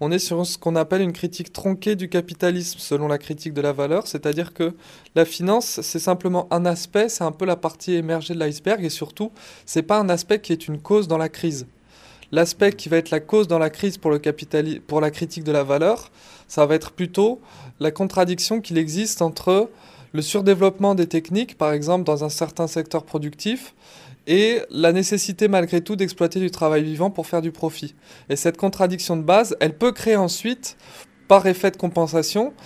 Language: French